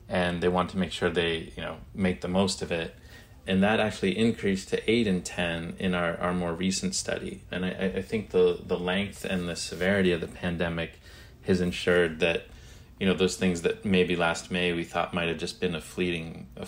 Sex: male